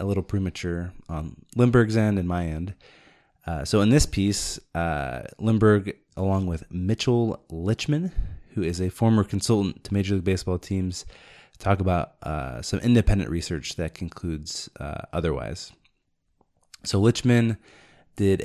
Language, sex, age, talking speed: English, male, 20-39, 140 wpm